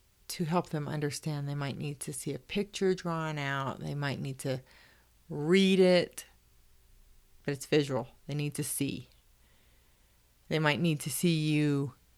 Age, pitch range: 30-49, 135-175 Hz